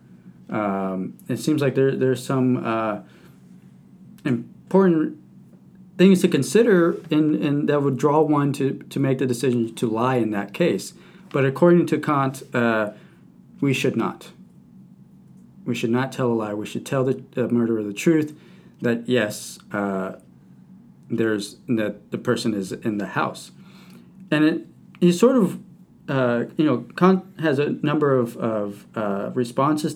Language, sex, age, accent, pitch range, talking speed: English, male, 40-59, American, 120-170 Hz, 150 wpm